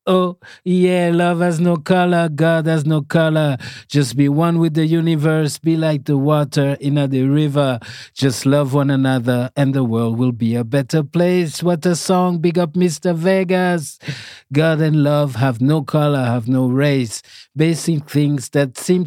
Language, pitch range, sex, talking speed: English, 130-160 Hz, male, 175 wpm